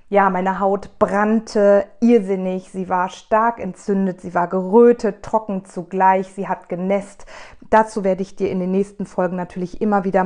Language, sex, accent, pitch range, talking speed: German, female, German, 185-220 Hz, 165 wpm